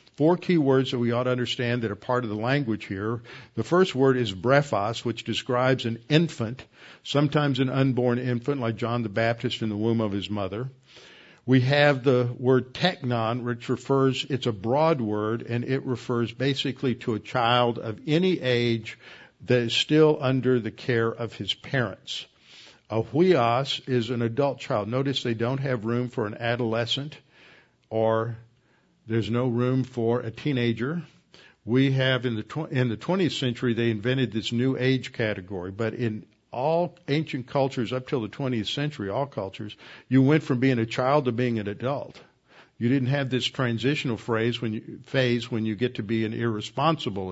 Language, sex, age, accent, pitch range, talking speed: English, male, 50-69, American, 115-135 Hz, 180 wpm